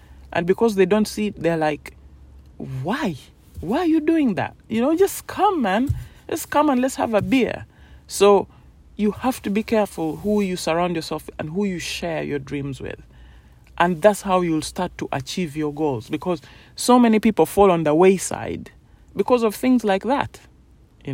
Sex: male